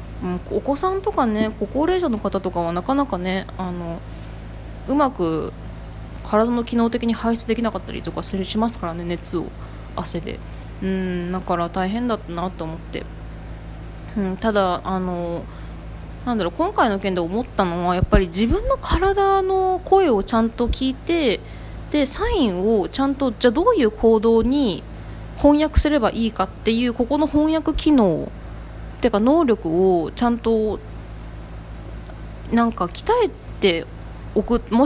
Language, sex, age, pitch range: Japanese, female, 20-39, 185-280 Hz